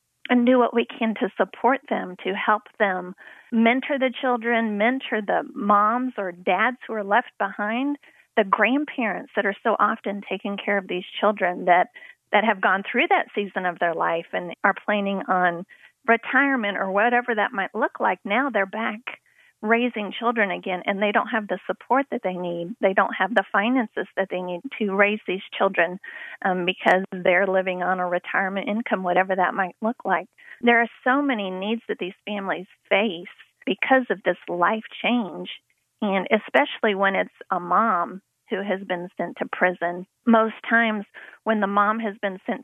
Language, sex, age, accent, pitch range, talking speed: English, female, 40-59, American, 190-230 Hz, 180 wpm